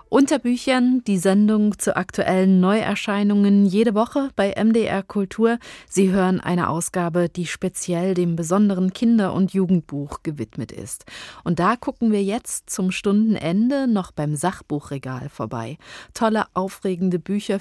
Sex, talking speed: female, 135 wpm